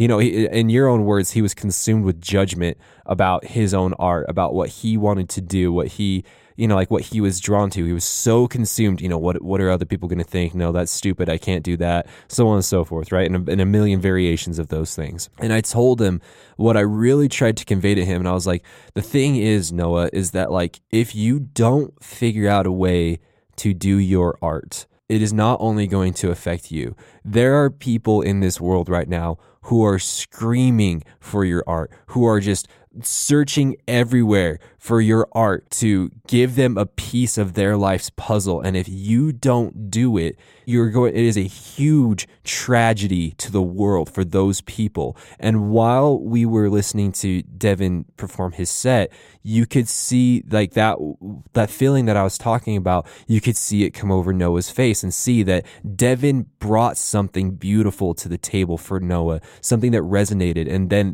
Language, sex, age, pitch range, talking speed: English, male, 20-39, 90-115 Hz, 200 wpm